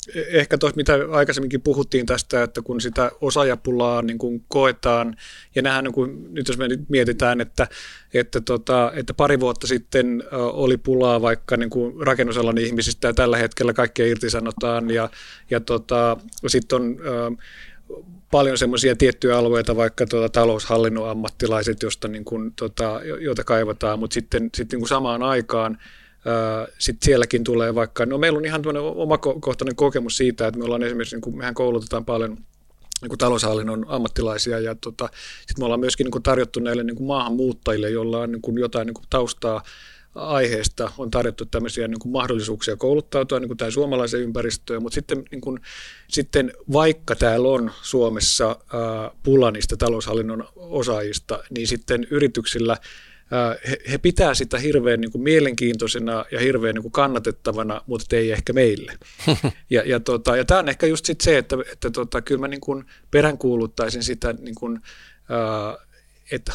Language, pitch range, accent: Finnish, 115-130 Hz, native